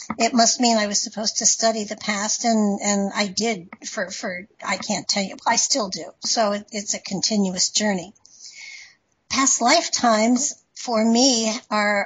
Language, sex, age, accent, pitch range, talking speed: English, female, 60-79, American, 210-245 Hz, 175 wpm